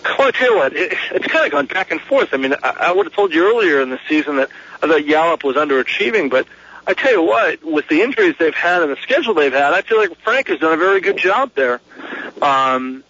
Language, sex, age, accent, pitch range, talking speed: English, male, 40-59, American, 140-190 Hz, 265 wpm